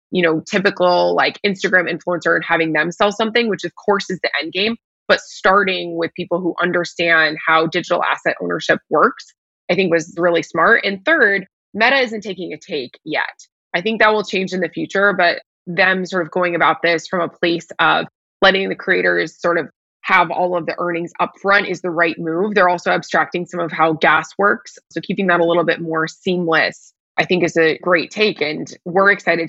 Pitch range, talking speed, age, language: 165-190 Hz, 205 wpm, 20-39, English